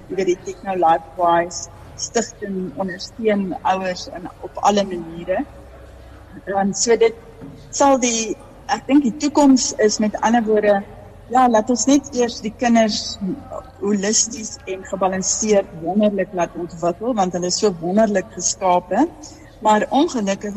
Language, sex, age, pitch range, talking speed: English, female, 60-79, 185-235 Hz, 130 wpm